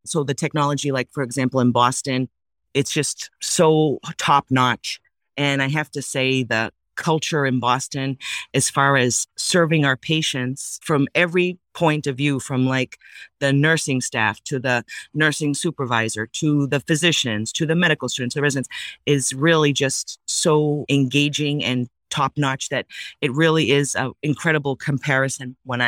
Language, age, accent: English, 30-49, American